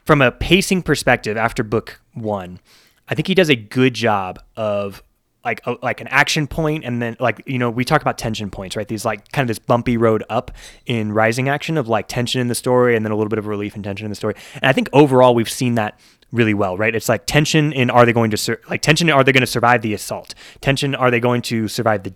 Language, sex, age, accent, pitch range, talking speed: English, male, 20-39, American, 110-135 Hz, 260 wpm